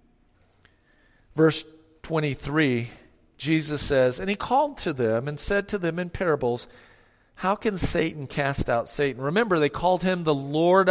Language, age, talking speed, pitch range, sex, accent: English, 50-69, 150 wpm, 130-175 Hz, male, American